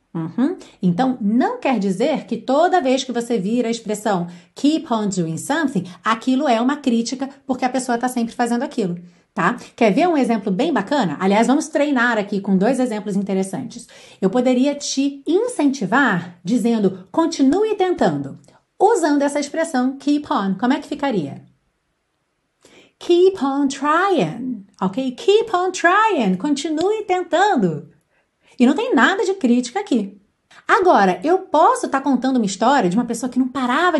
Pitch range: 225-310 Hz